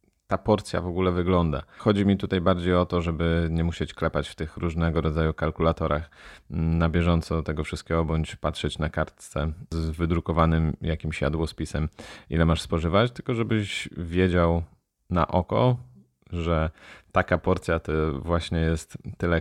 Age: 30-49